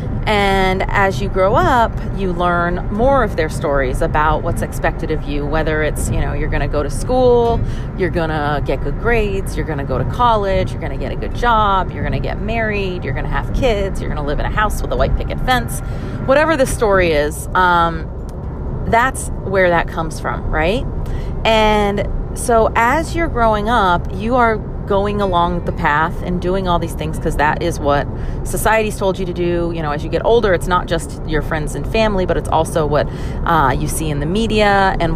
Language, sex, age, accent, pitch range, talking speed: English, female, 30-49, American, 145-195 Hz, 220 wpm